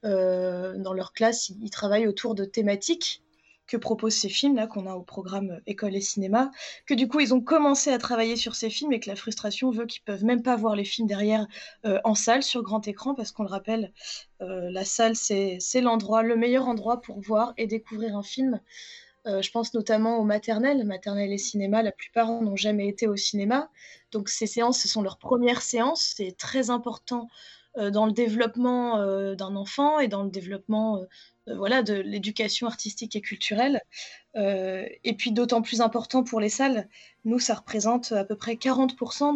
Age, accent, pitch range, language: 20-39, French, 205-245 Hz, French